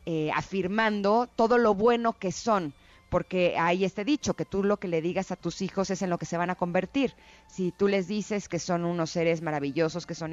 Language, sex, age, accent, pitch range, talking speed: Spanish, female, 30-49, Mexican, 160-200 Hz, 225 wpm